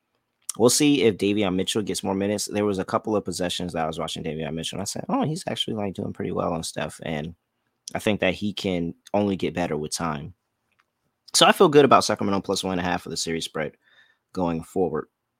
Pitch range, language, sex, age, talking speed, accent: 85-100 Hz, English, male, 30-49, 235 wpm, American